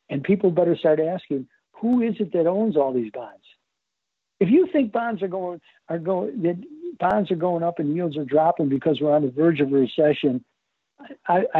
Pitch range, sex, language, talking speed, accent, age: 155-210 Hz, male, English, 200 wpm, American, 60-79